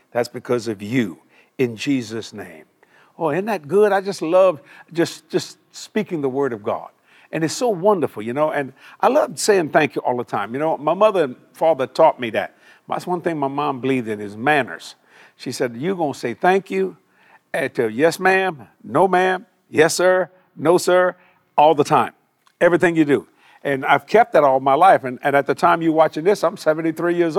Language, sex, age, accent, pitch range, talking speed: English, male, 50-69, American, 140-185 Hz, 205 wpm